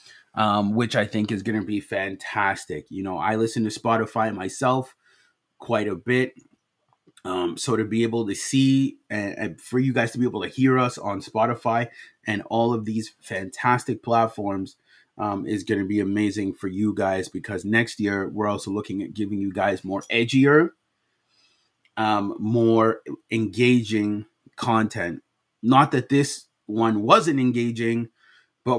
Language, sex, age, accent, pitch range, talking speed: English, male, 30-49, American, 105-125 Hz, 160 wpm